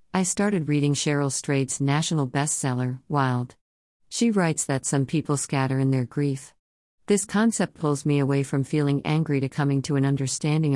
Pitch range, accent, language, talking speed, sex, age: 130-160 Hz, American, English, 165 wpm, female, 50-69